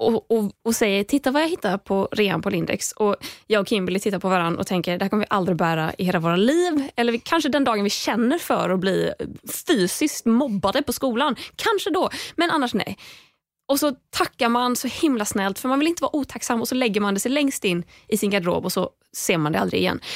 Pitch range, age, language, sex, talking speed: 215-340 Hz, 20-39, Swedish, female, 240 wpm